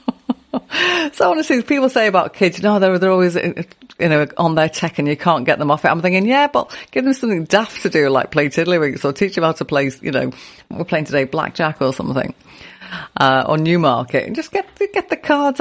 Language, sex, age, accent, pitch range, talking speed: English, female, 40-59, British, 135-195 Hz, 240 wpm